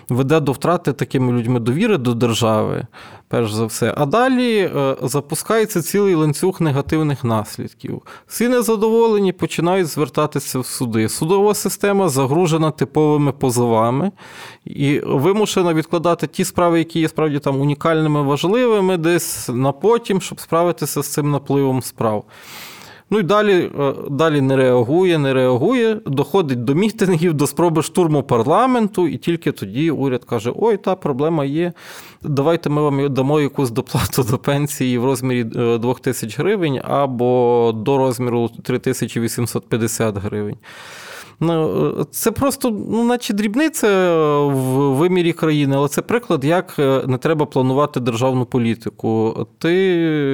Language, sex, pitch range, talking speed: Ukrainian, male, 125-170 Hz, 130 wpm